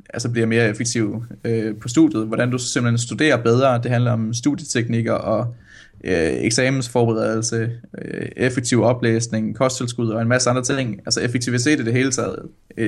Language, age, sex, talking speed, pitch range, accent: Danish, 20-39, male, 160 wpm, 115-130 Hz, native